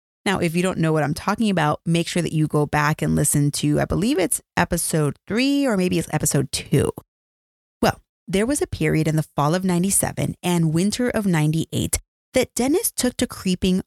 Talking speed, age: 205 wpm, 30-49